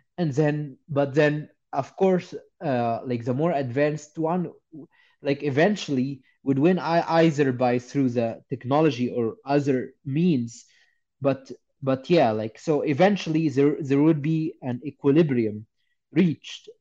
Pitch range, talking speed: 125-165 Hz, 130 wpm